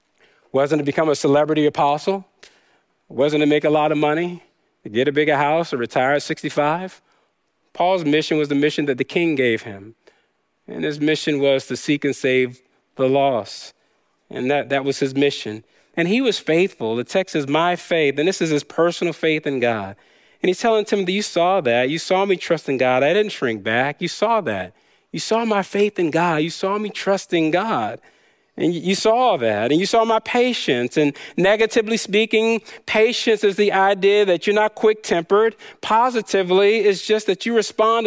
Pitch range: 150-220 Hz